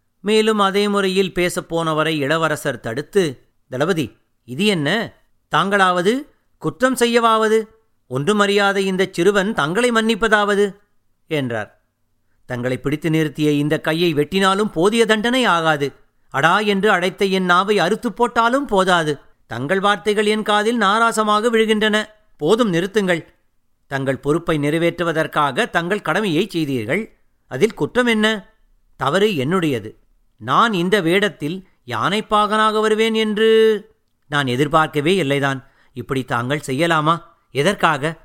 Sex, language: male, Tamil